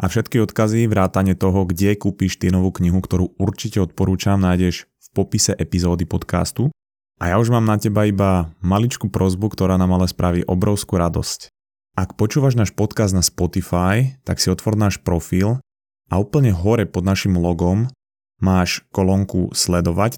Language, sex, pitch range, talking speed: Slovak, male, 90-110 Hz, 155 wpm